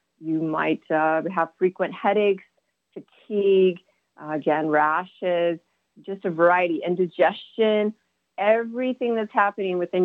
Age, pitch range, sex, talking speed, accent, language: 30-49, 160-190 Hz, female, 105 wpm, American, English